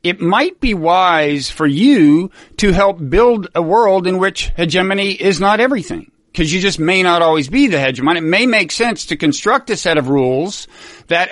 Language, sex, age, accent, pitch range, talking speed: English, male, 50-69, American, 155-205 Hz, 195 wpm